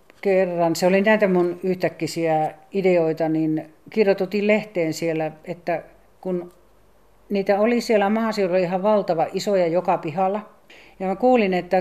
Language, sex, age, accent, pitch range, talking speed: Finnish, female, 40-59, native, 155-190 Hz, 130 wpm